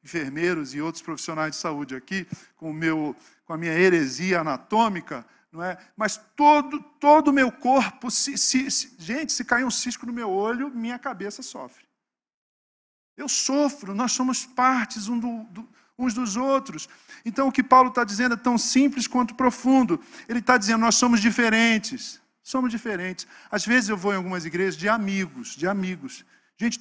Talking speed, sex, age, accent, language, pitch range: 175 wpm, male, 50-69, Brazilian, Portuguese, 195-260 Hz